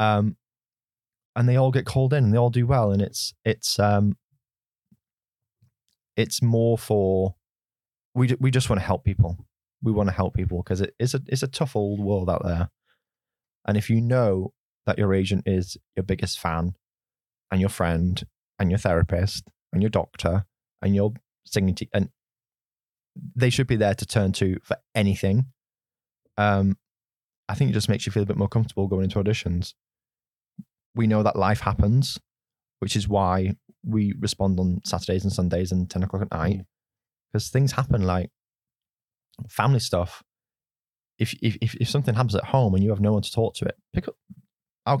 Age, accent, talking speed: 20-39, British, 180 wpm